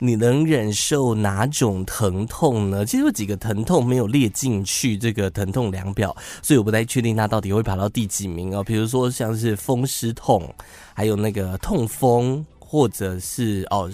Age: 20-39